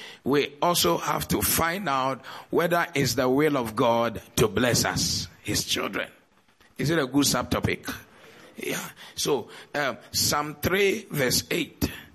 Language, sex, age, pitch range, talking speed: English, male, 50-69, 140-215 Hz, 145 wpm